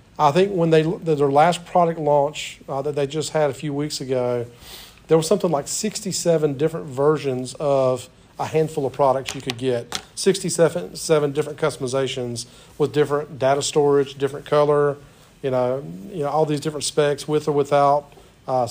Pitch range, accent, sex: 140-165 Hz, American, male